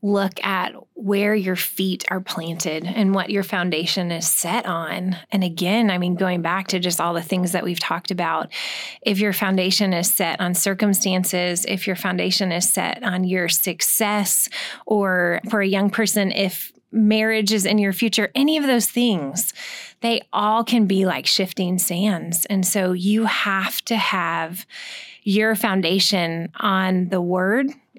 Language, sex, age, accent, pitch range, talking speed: English, female, 20-39, American, 185-220 Hz, 165 wpm